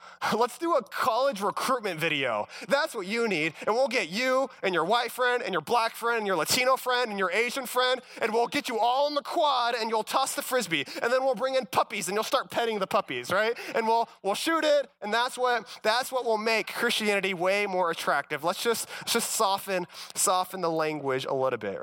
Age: 20-39